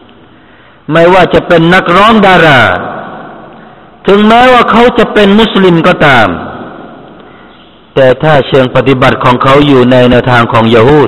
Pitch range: 130-175 Hz